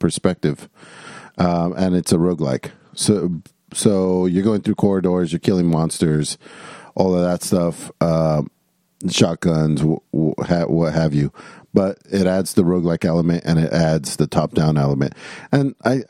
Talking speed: 140 wpm